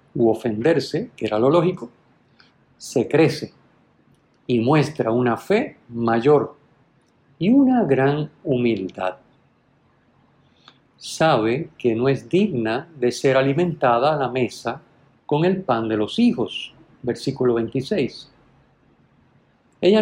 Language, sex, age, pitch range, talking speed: Spanish, male, 50-69, 125-170 Hz, 110 wpm